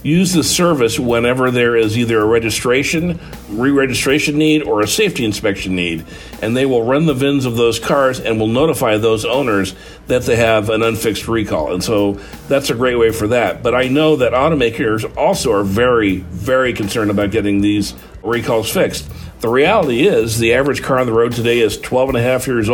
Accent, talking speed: American, 200 wpm